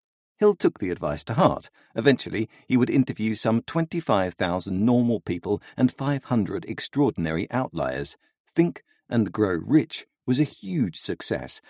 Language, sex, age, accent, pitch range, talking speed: English, male, 50-69, British, 95-140 Hz, 135 wpm